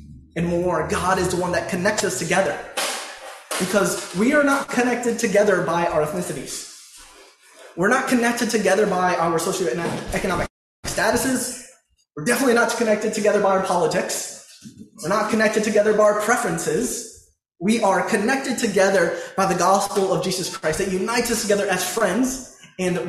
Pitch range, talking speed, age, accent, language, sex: 170-230 Hz, 155 wpm, 20-39, American, English, male